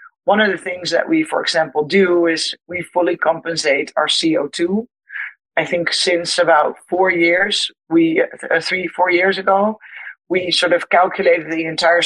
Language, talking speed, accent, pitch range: English, 165 wpm, Dutch, 165-195 Hz